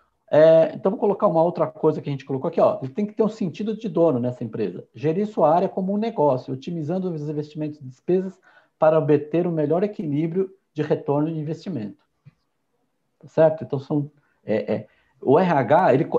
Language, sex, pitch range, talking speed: Portuguese, male, 145-195 Hz, 195 wpm